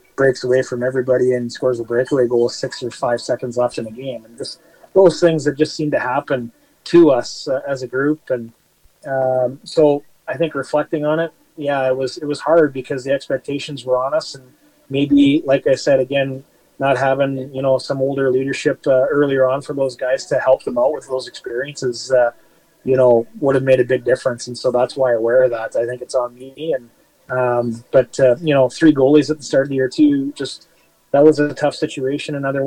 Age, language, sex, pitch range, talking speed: 30-49, English, male, 130-145 Hz, 225 wpm